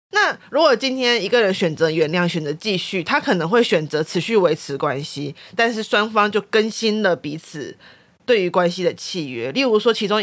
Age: 30-49